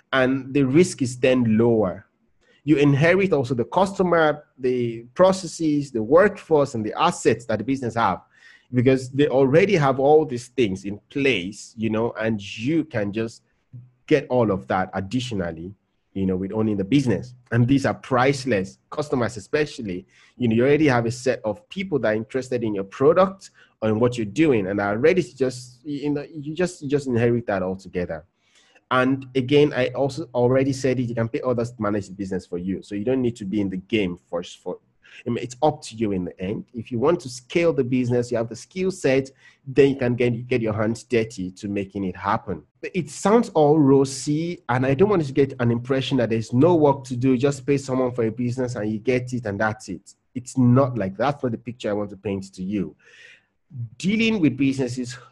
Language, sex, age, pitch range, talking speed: English, male, 30-49, 110-140 Hz, 210 wpm